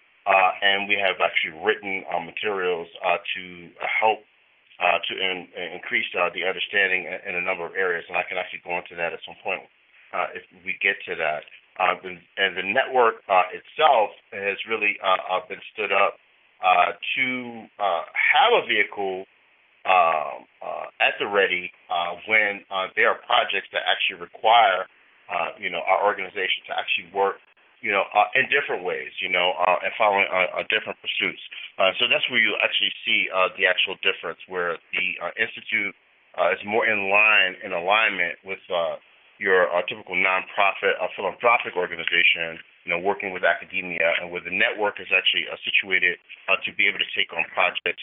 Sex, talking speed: male, 185 wpm